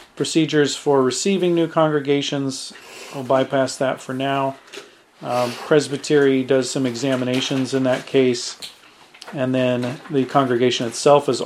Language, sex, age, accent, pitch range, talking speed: English, male, 40-59, American, 130-145 Hz, 125 wpm